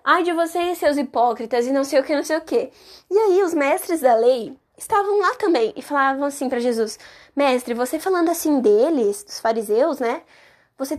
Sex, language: female, Portuguese